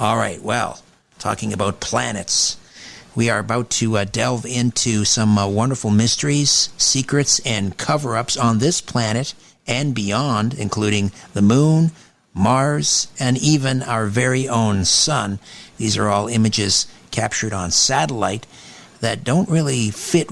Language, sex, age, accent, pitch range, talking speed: English, male, 50-69, American, 100-125 Hz, 135 wpm